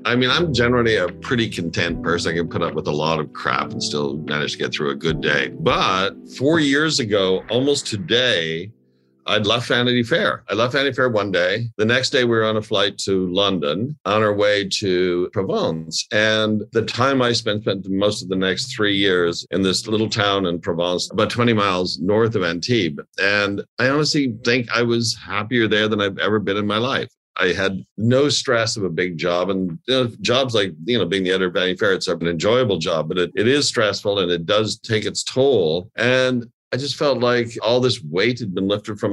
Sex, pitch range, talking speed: male, 90-120 Hz, 220 wpm